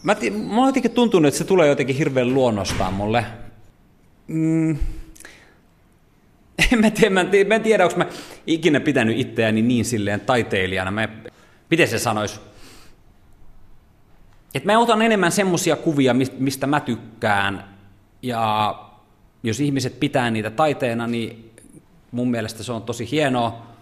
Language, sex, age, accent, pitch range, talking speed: Finnish, male, 30-49, native, 110-150 Hz, 125 wpm